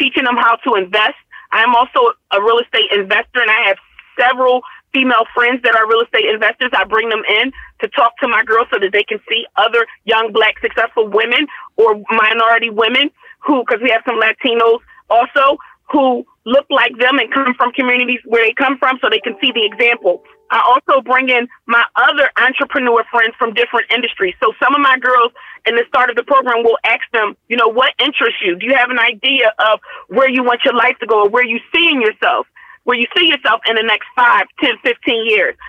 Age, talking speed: 30-49, 215 wpm